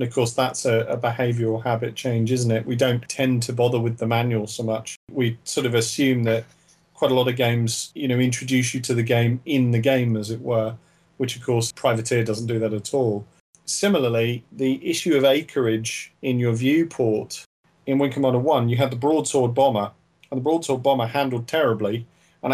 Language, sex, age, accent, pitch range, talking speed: English, male, 40-59, British, 115-140 Hz, 205 wpm